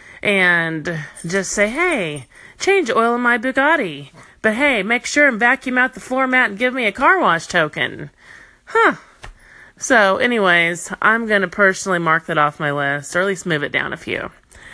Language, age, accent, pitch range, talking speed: English, 30-49, American, 175-240 Hz, 185 wpm